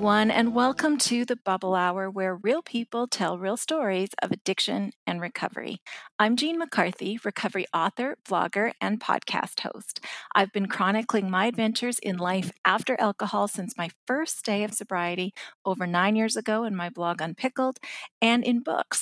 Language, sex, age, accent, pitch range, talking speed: English, female, 40-59, American, 190-235 Hz, 160 wpm